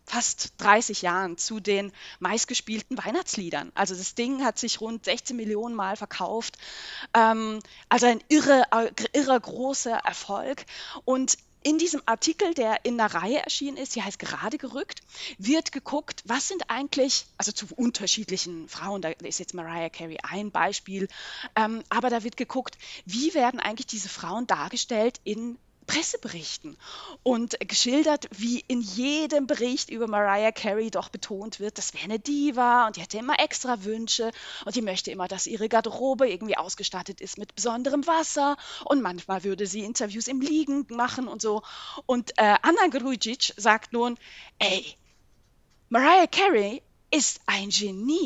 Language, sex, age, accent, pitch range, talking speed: German, female, 20-39, German, 205-265 Hz, 150 wpm